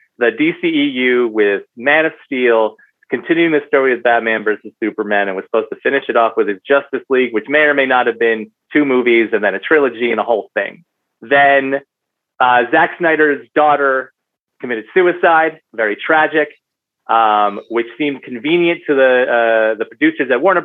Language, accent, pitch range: English, American, 125-160 Hz